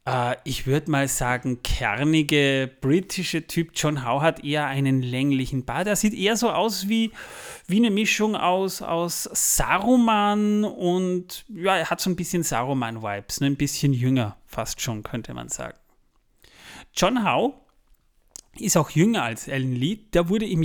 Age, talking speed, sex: 30-49, 160 wpm, male